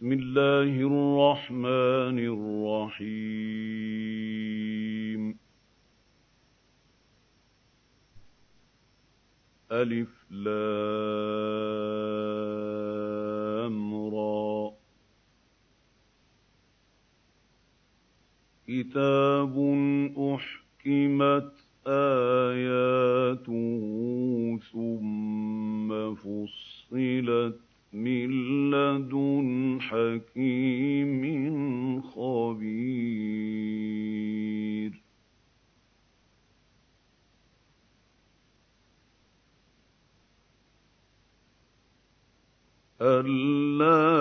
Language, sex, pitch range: Arabic, male, 110-140 Hz